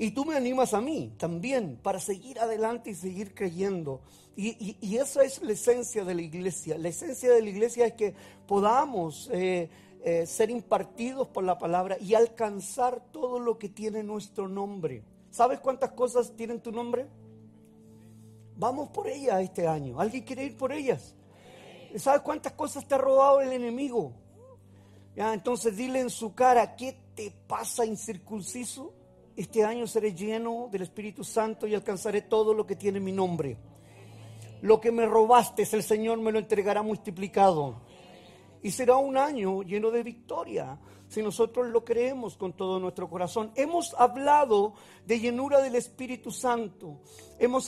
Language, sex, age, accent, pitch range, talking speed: Spanish, male, 40-59, Mexican, 195-245 Hz, 160 wpm